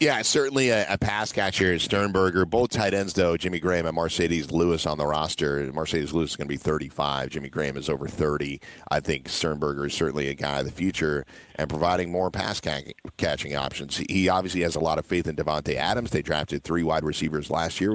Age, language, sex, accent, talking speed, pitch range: 40-59, English, male, American, 220 wpm, 85-105 Hz